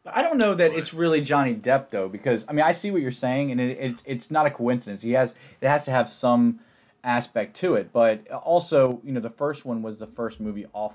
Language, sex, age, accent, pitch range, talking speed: English, male, 30-49, American, 115-145 Hz, 250 wpm